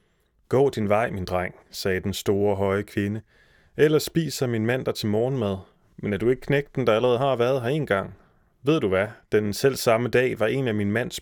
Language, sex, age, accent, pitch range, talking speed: Danish, male, 30-49, native, 100-125 Hz, 220 wpm